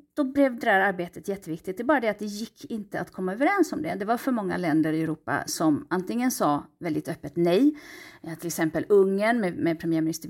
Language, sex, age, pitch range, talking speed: Swedish, female, 30-49, 180-290 Hz, 225 wpm